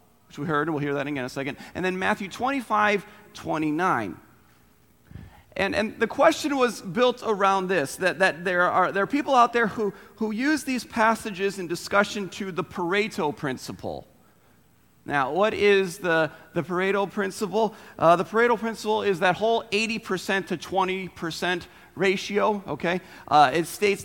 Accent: American